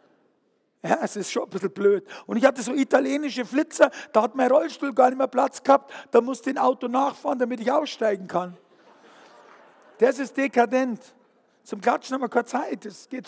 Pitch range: 215-255 Hz